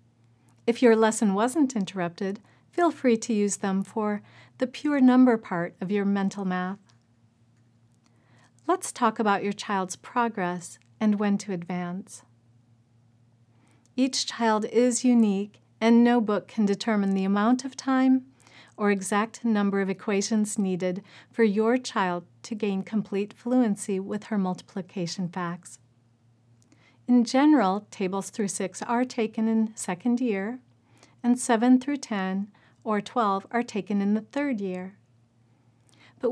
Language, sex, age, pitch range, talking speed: English, female, 40-59, 185-240 Hz, 135 wpm